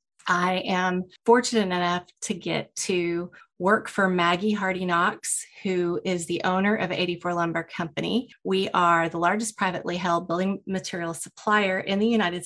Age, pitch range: 30-49, 170-195 Hz